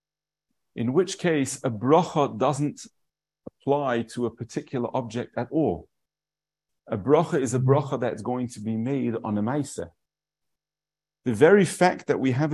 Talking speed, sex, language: 155 wpm, male, English